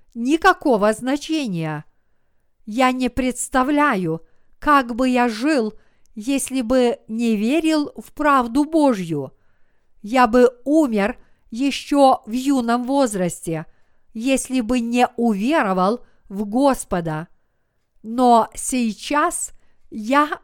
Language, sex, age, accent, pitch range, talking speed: Russian, female, 50-69, native, 230-285 Hz, 95 wpm